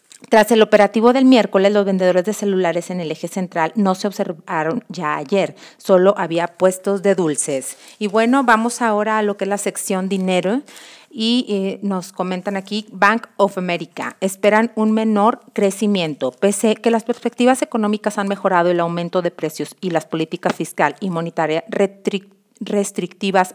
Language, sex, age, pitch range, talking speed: Spanish, female, 40-59, 180-215 Hz, 165 wpm